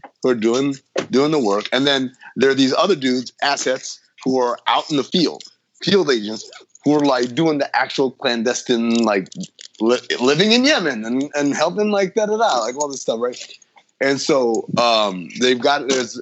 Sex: male